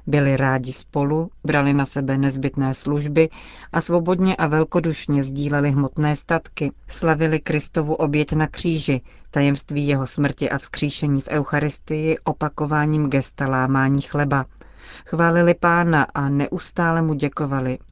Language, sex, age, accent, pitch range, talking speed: Czech, female, 40-59, native, 140-160 Hz, 125 wpm